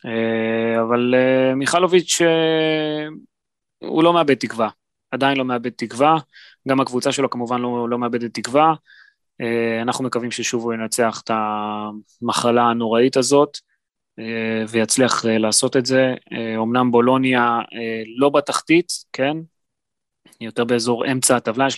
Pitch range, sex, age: 115-135 Hz, male, 20-39